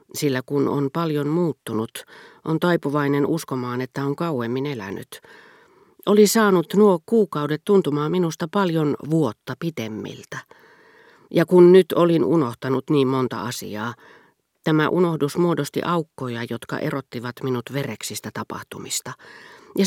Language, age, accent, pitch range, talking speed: Finnish, 40-59, native, 125-175 Hz, 120 wpm